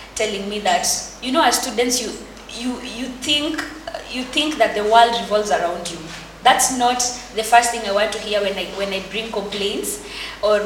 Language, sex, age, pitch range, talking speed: English, female, 20-39, 195-245 Hz, 195 wpm